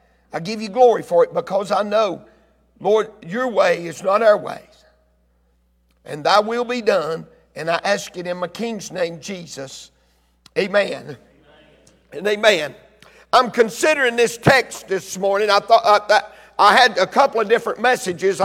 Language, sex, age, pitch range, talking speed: English, male, 50-69, 195-250 Hz, 165 wpm